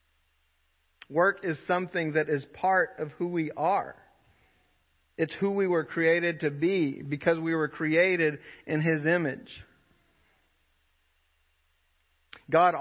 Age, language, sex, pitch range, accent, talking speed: 40-59, English, male, 135-160 Hz, American, 115 wpm